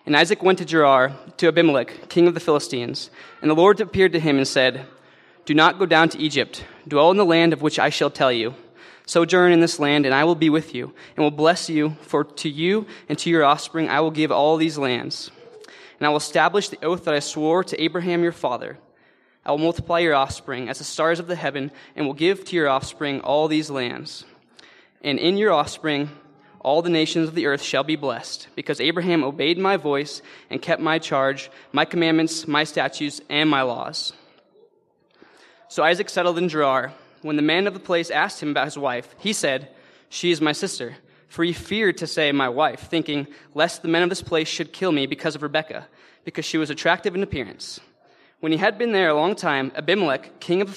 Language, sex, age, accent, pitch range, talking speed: English, male, 20-39, American, 145-175 Hz, 215 wpm